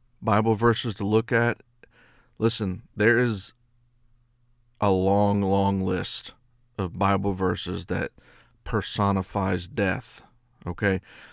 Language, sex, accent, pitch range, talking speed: English, male, American, 95-120 Hz, 100 wpm